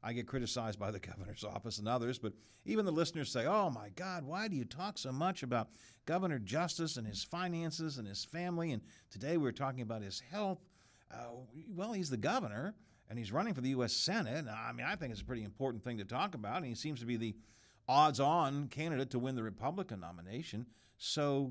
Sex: male